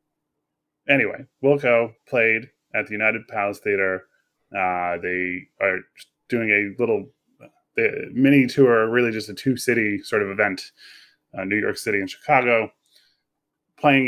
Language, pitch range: English, 100-130 Hz